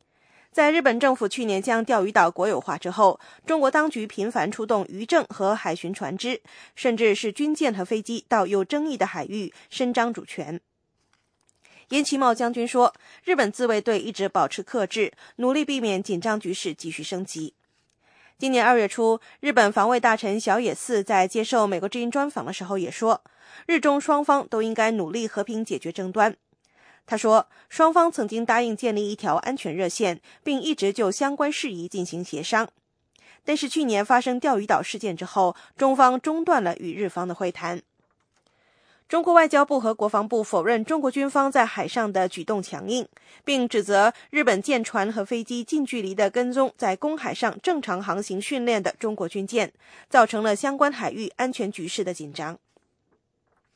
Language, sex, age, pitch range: English, female, 20-39, 195-265 Hz